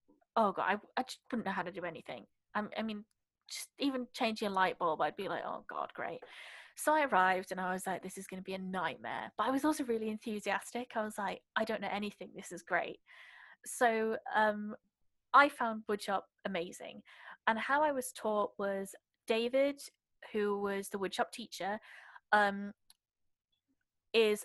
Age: 20-39